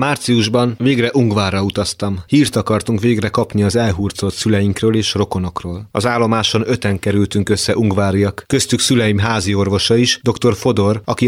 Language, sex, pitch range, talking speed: Hungarian, male, 105-130 Hz, 145 wpm